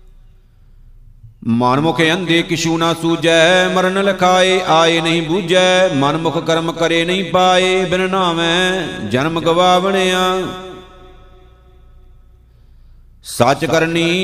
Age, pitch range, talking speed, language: 50-69, 165-185 Hz, 85 wpm, Punjabi